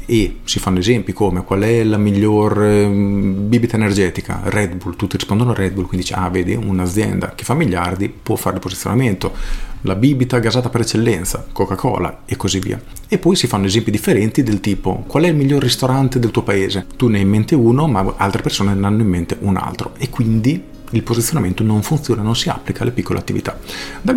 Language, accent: Italian, native